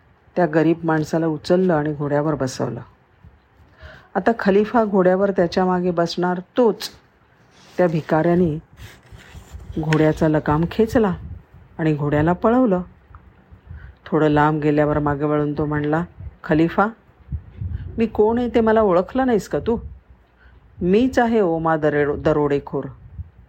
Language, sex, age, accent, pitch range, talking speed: Marathi, female, 50-69, native, 140-185 Hz, 110 wpm